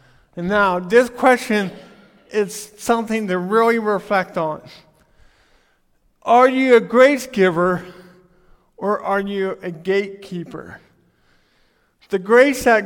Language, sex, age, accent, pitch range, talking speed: English, male, 50-69, American, 160-210 Hz, 105 wpm